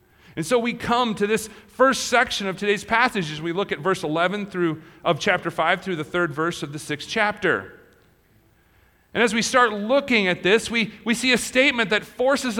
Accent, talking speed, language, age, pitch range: American, 200 wpm, English, 40-59, 165-220 Hz